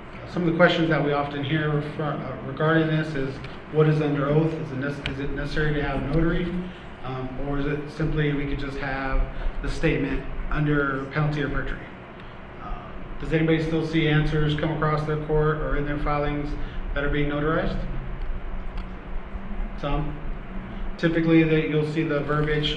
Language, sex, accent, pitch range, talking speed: English, male, American, 135-155 Hz, 170 wpm